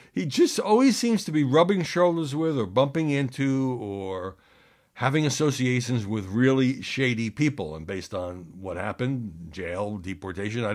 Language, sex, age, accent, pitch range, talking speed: English, male, 60-79, American, 100-140 Hz, 145 wpm